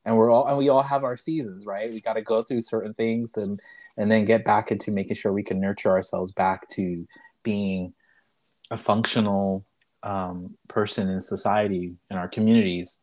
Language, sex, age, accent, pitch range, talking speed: English, male, 30-49, American, 100-120 Hz, 190 wpm